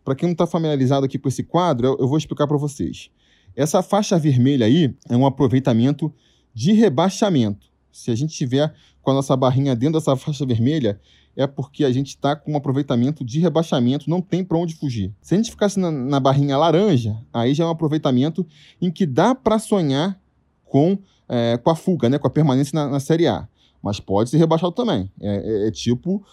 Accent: Brazilian